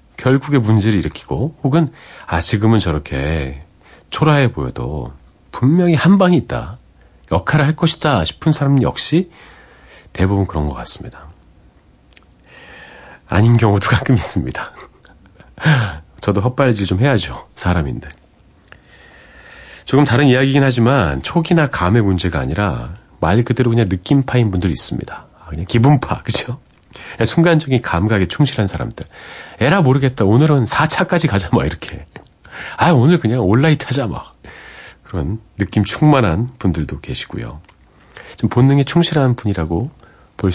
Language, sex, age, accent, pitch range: Korean, male, 40-59, native, 85-135 Hz